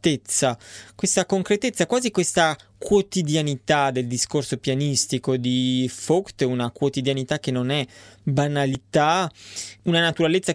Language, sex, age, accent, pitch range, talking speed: Italian, male, 20-39, native, 125-155 Hz, 100 wpm